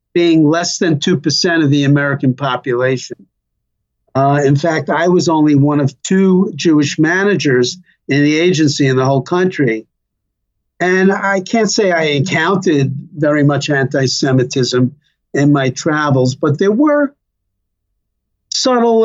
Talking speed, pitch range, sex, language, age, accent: 130 wpm, 140-165 Hz, male, English, 50-69, American